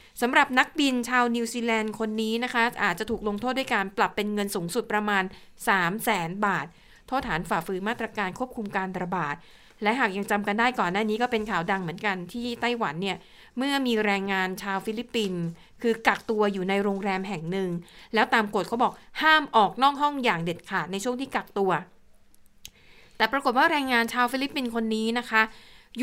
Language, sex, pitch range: Thai, female, 195-240 Hz